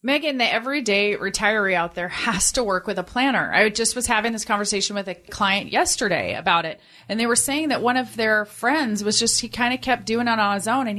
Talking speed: 245 wpm